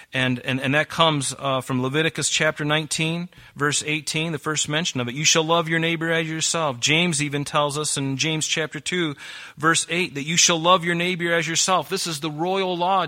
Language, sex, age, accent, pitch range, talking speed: English, male, 40-59, American, 125-155 Hz, 215 wpm